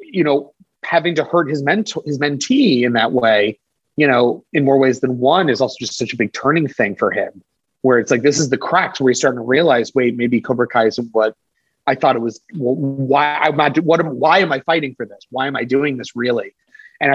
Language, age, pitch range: English, 30-49, 125-155 Hz